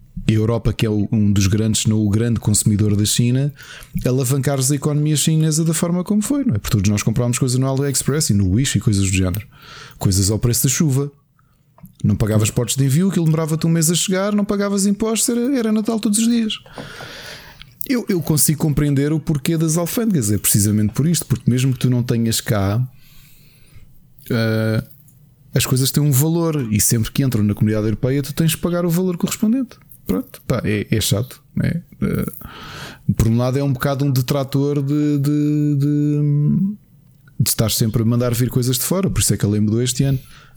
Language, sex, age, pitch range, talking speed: Portuguese, male, 20-39, 115-150 Hz, 205 wpm